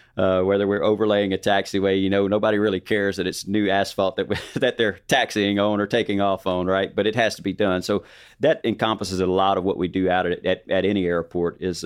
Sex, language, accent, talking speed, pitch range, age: male, English, American, 245 wpm, 95-100 Hz, 40-59